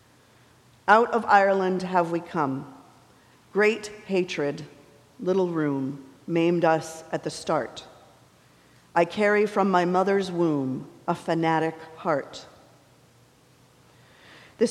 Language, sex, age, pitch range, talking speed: English, female, 50-69, 170-210 Hz, 100 wpm